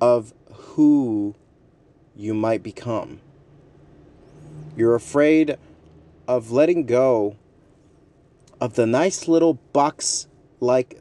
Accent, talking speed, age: American, 85 wpm, 30-49